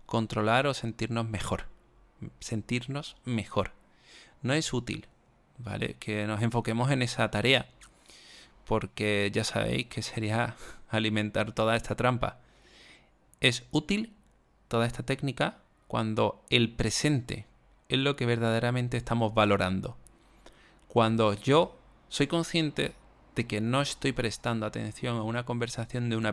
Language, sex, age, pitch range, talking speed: Spanish, male, 20-39, 105-125 Hz, 125 wpm